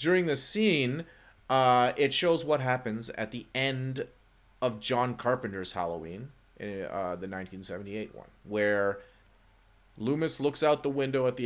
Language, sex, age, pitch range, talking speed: English, male, 30-49, 100-125 Hz, 140 wpm